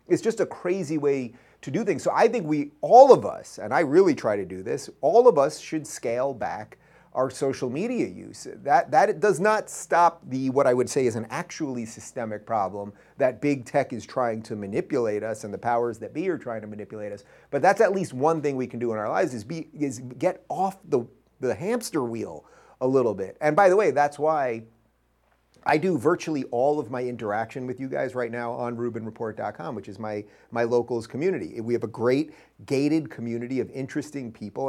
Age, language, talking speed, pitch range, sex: 30-49, English, 215 wpm, 115-145 Hz, male